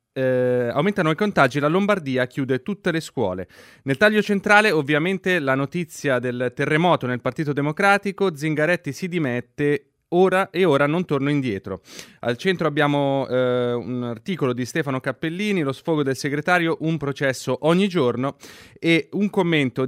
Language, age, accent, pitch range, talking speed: Italian, 30-49, native, 130-175 Hz, 145 wpm